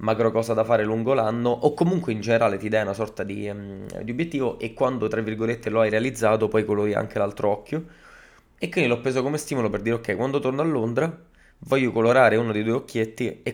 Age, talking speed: 20-39, 220 wpm